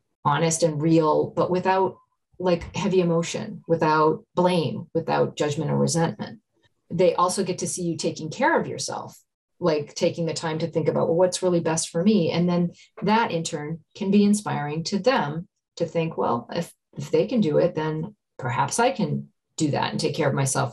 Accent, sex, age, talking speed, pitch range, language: American, female, 40-59, 195 wpm, 160-205 Hz, English